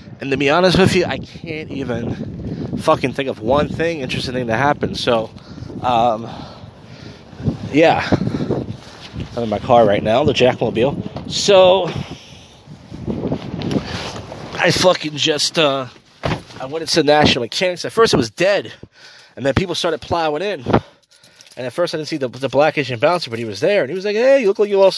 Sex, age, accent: male, 30-49, American